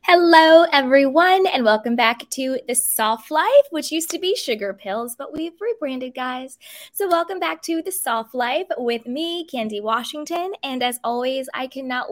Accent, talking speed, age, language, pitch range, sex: American, 175 wpm, 20-39, English, 220-290 Hz, female